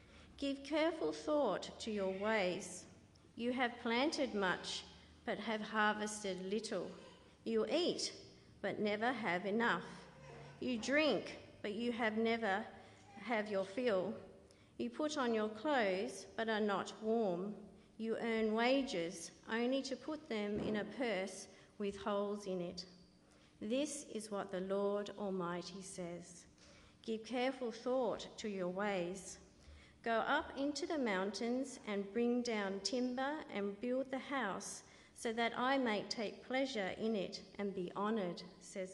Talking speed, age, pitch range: 140 wpm, 50-69, 190-245 Hz